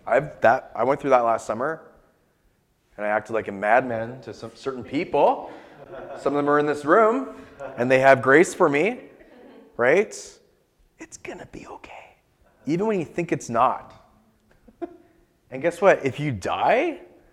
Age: 30-49